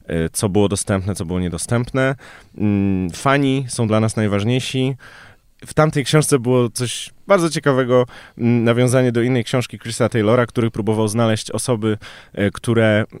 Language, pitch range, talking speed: Polish, 100-120 Hz, 130 wpm